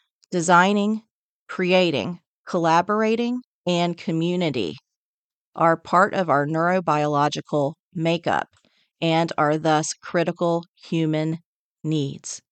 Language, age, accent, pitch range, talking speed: English, 40-59, American, 155-190 Hz, 80 wpm